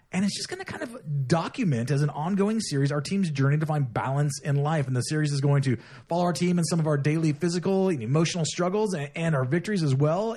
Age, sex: 30-49, male